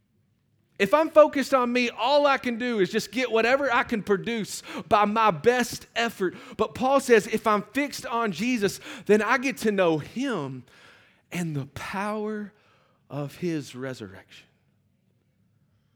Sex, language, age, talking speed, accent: male, English, 40-59, 150 wpm, American